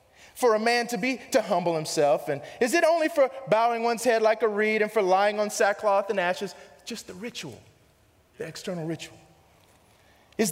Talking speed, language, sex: 190 wpm, English, male